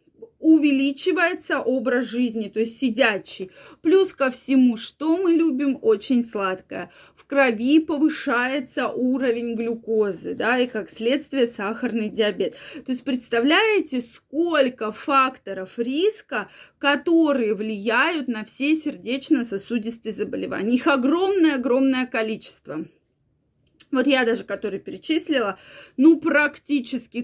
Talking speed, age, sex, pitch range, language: 105 wpm, 20-39, female, 230-295 Hz, Russian